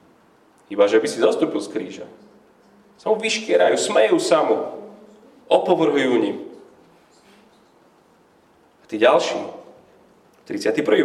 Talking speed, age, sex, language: 105 wpm, 30-49, male, Slovak